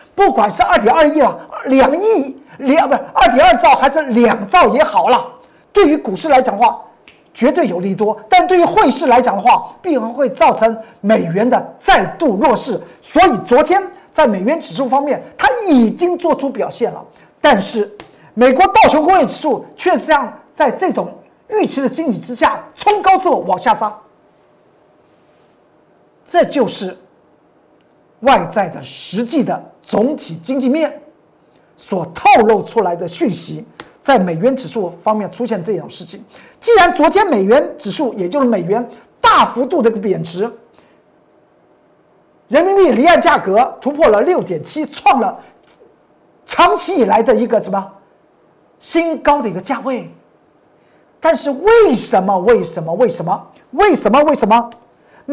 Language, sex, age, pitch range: Chinese, male, 50-69, 225-330 Hz